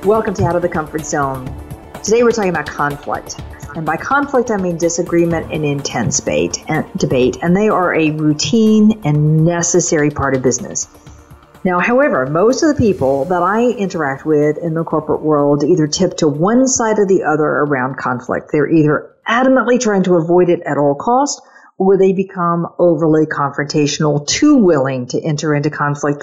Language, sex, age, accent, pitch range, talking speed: English, female, 50-69, American, 150-195 Hz, 175 wpm